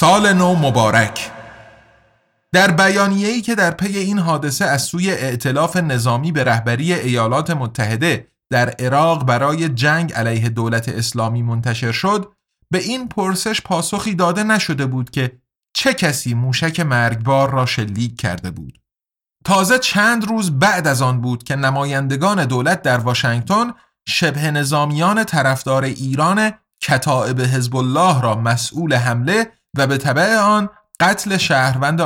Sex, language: male, Persian